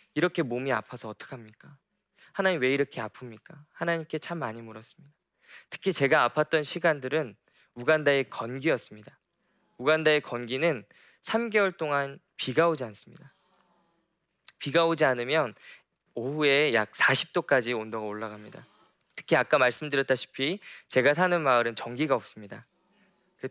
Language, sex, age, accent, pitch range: Korean, male, 20-39, native, 125-170 Hz